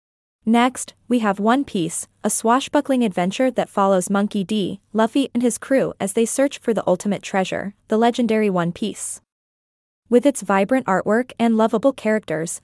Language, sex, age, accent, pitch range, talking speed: English, female, 20-39, American, 200-250 Hz, 160 wpm